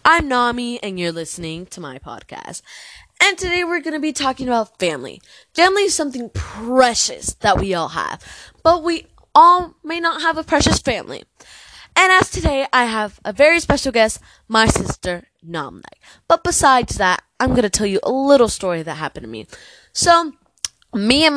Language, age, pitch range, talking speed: English, 20-39, 180-260 Hz, 180 wpm